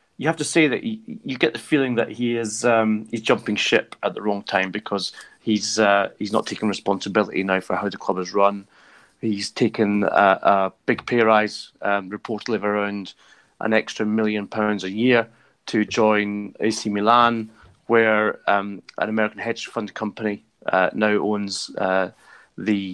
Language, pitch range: English, 105-115 Hz